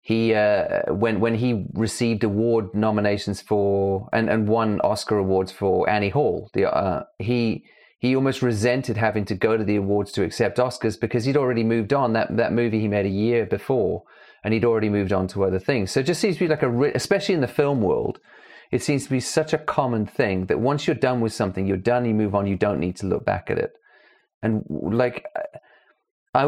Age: 30-49